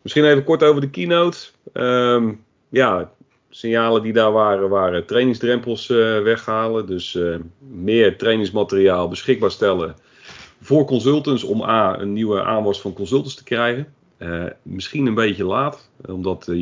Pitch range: 95-120 Hz